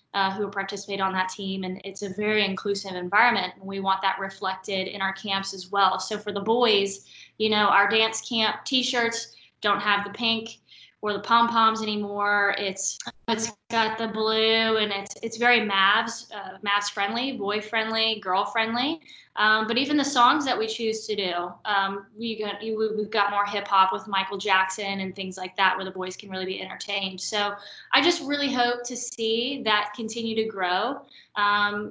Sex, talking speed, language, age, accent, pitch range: female, 190 wpm, English, 10-29, American, 200-230 Hz